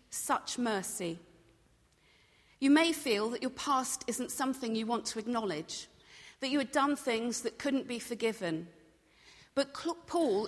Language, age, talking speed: English, 40-59, 145 wpm